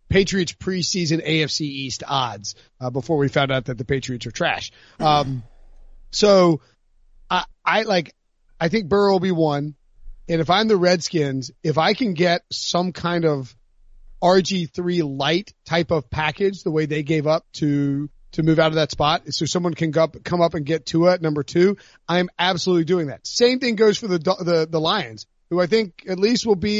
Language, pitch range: English, 145-180 Hz